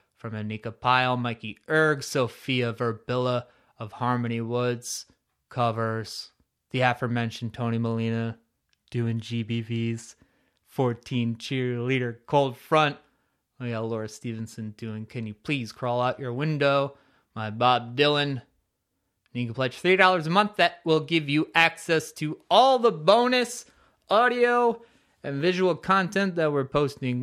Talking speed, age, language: 130 wpm, 20-39, English